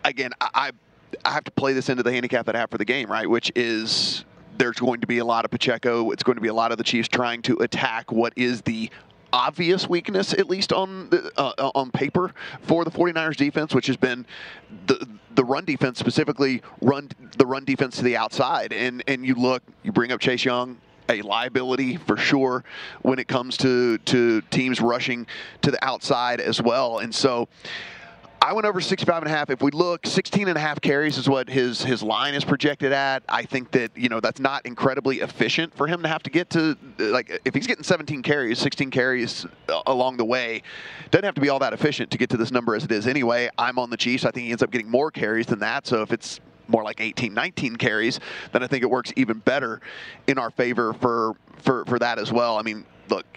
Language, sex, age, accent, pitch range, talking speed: English, male, 30-49, American, 120-145 Hz, 230 wpm